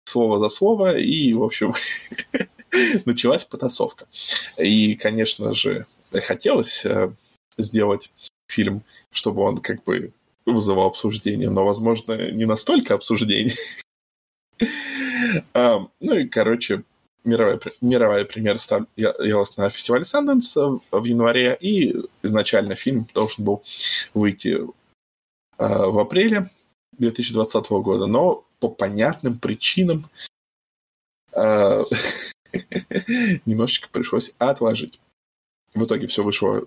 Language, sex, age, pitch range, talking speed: Russian, male, 20-39, 105-165 Hz, 105 wpm